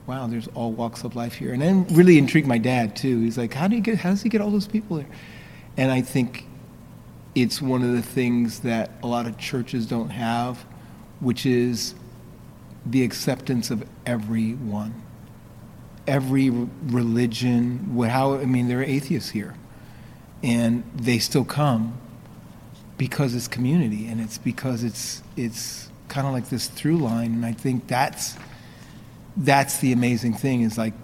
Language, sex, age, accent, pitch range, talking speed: English, male, 40-59, American, 115-135 Hz, 170 wpm